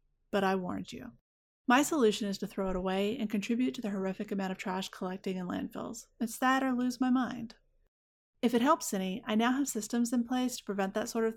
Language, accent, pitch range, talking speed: English, American, 200-245 Hz, 225 wpm